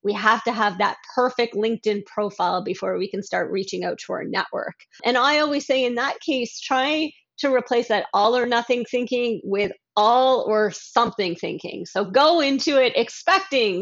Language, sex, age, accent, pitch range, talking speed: English, female, 30-49, American, 205-250 Hz, 180 wpm